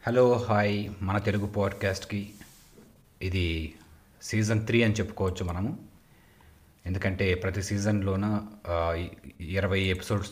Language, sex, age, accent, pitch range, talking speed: Telugu, male, 30-49, native, 85-105 Hz, 95 wpm